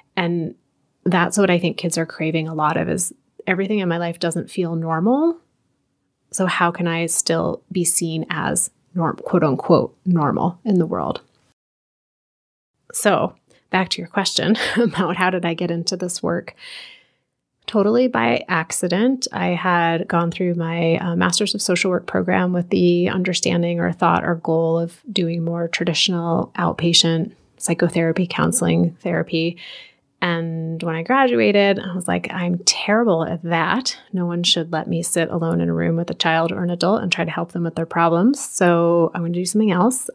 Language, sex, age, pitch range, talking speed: English, female, 30-49, 165-195 Hz, 175 wpm